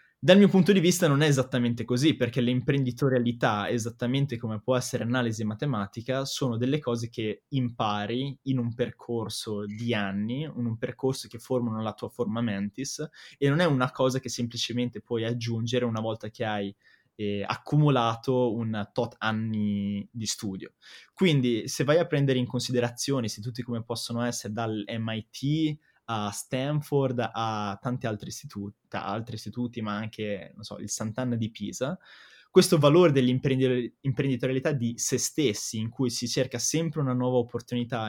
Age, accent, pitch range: 20-39, native, 110-130 Hz